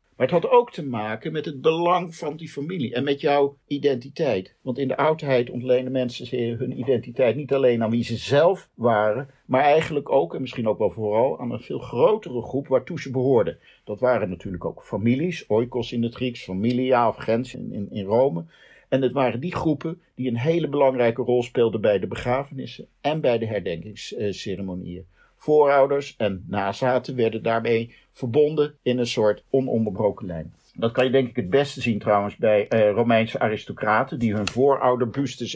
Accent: Dutch